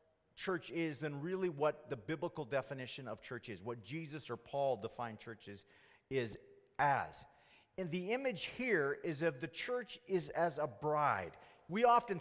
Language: English